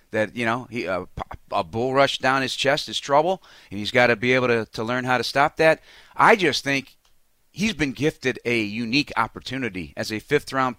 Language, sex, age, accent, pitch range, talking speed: English, male, 40-59, American, 110-135 Hz, 215 wpm